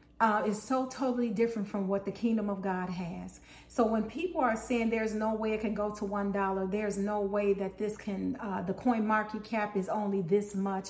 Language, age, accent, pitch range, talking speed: English, 40-59, American, 200-240 Hz, 220 wpm